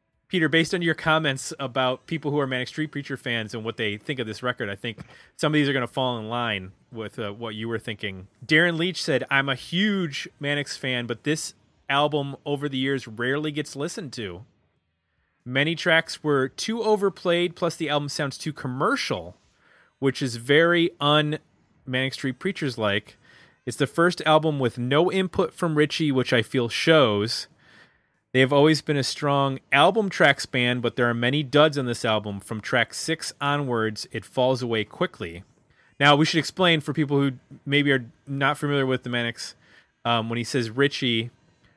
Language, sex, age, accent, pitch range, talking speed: English, male, 30-49, American, 115-150 Hz, 185 wpm